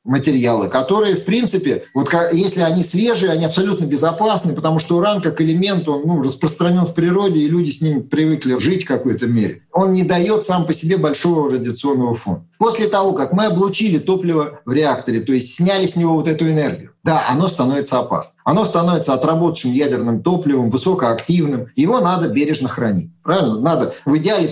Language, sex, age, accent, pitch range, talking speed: Russian, male, 40-59, native, 145-190 Hz, 180 wpm